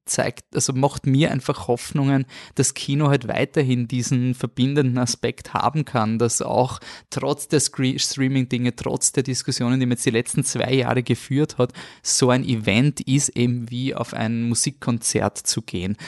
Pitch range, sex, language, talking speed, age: 115-140 Hz, male, German, 160 wpm, 20-39